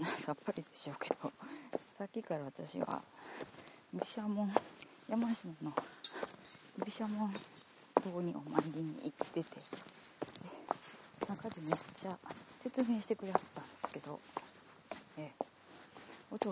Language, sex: Japanese, female